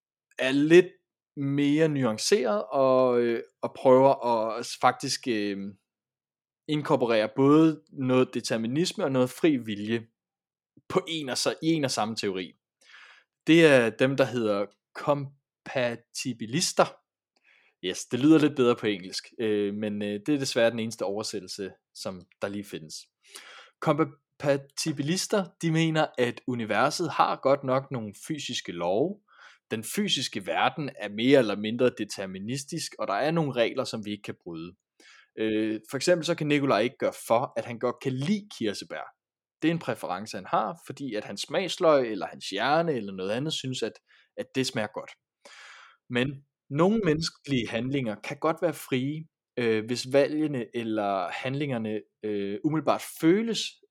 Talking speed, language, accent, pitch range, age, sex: 150 wpm, Danish, native, 115-155 Hz, 20-39, male